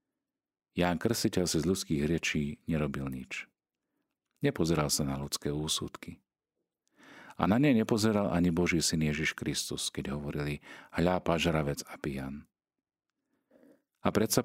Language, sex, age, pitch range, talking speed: Slovak, male, 40-59, 75-95 Hz, 120 wpm